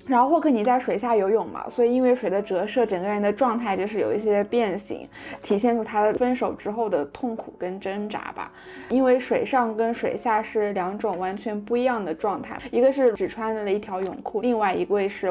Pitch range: 195-235 Hz